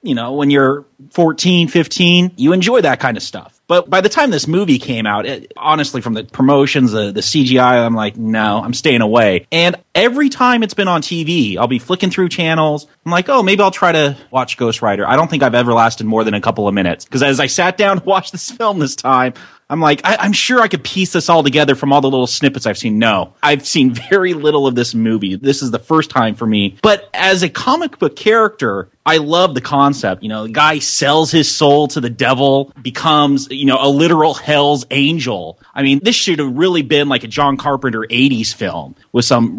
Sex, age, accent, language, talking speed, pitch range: male, 30-49, American, English, 230 wpm, 130-180 Hz